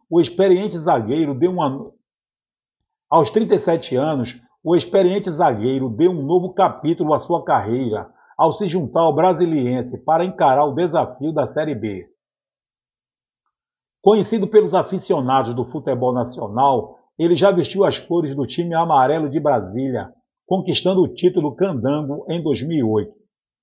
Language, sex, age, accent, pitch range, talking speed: Portuguese, male, 50-69, Brazilian, 135-185 Hz, 130 wpm